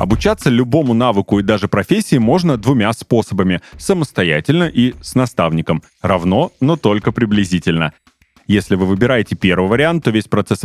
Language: Russian